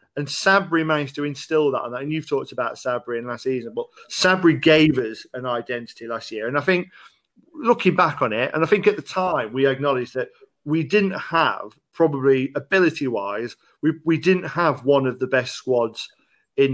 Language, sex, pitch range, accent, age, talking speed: English, male, 130-165 Hz, British, 40-59, 190 wpm